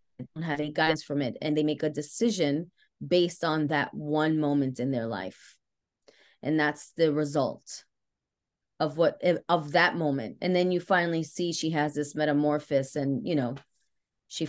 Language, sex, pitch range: English, female, 150-180 Hz